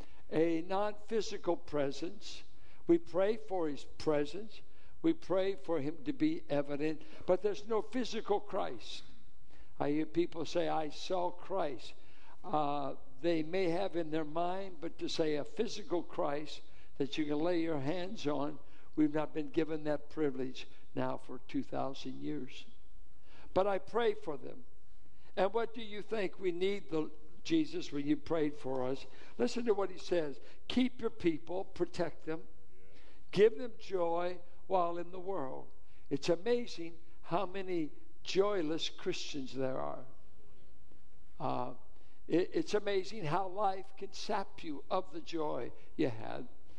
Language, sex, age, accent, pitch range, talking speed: English, male, 60-79, American, 155-210 Hz, 145 wpm